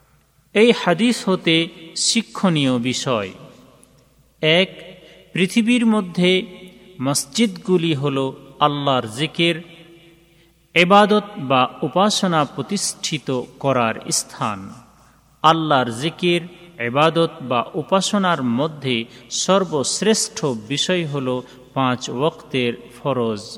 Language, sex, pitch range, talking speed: Bengali, male, 130-175 Hz, 75 wpm